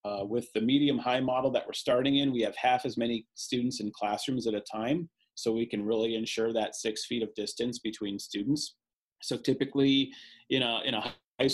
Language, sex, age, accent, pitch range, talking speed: English, male, 30-49, American, 110-130 Hz, 215 wpm